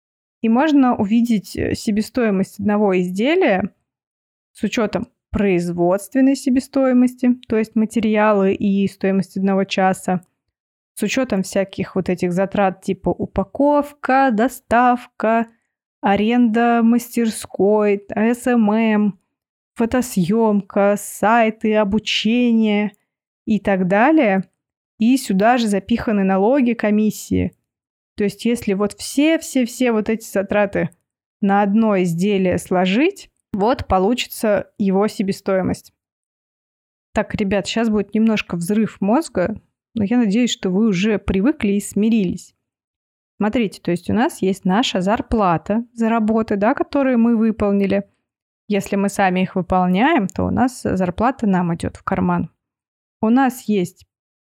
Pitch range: 195-235 Hz